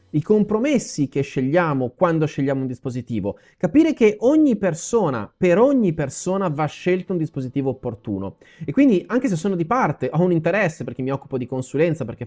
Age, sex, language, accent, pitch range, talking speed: 30-49, male, Italian, native, 135-200 Hz, 175 wpm